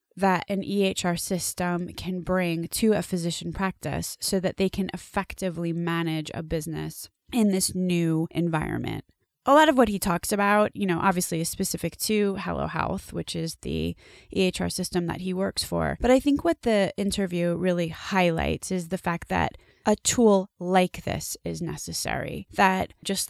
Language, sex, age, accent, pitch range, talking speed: English, female, 20-39, American, 165-190 Hz, 170 wpm